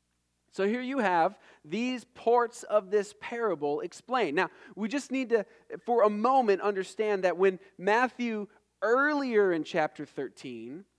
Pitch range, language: 185-255 Hz, English